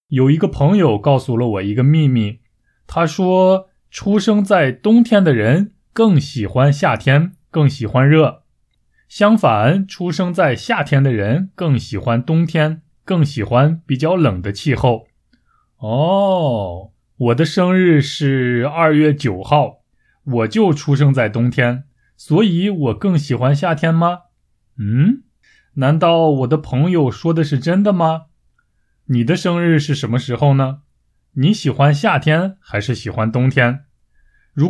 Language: Chinese